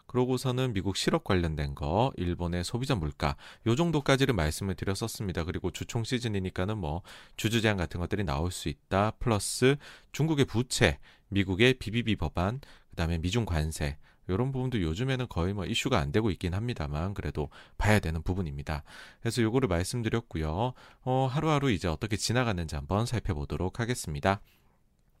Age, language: 30-49, Korean